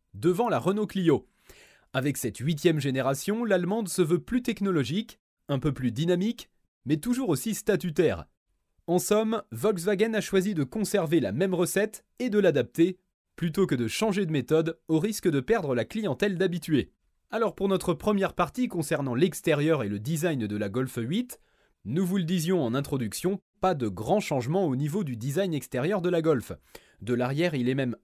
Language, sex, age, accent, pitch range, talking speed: French, male, 30-49, French, 140-200 Hz, 180 wpm